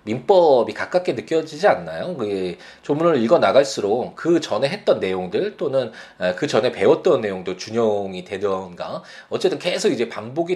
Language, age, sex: Korean, 20-39, male